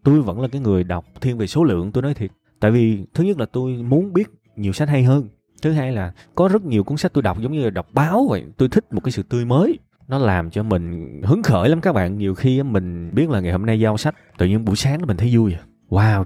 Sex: male